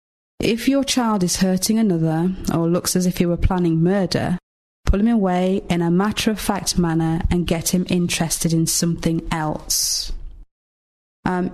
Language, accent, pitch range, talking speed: English, British, 165-185 Hz, 150 wpm